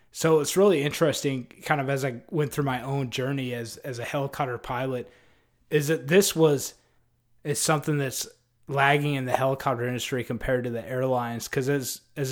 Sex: male